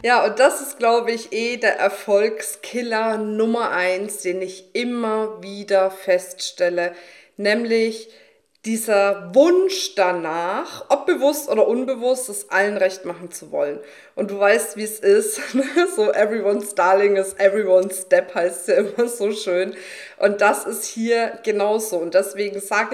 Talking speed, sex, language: 145 wpm, female, German